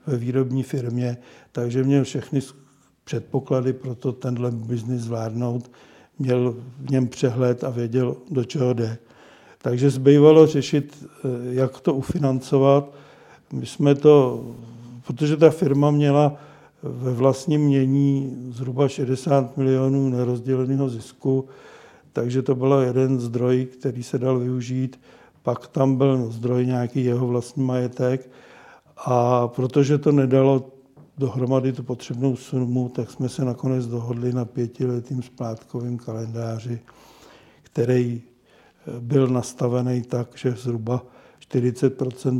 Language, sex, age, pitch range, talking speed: Czech, male, 60-79, 120-135 Hz, 115 wpm